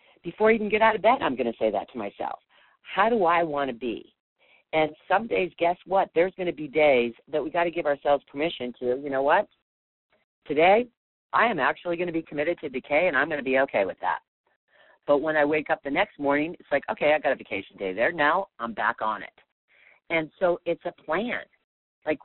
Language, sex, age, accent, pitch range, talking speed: English, female, 50-69, American, 130-170 Hz, 235 wpm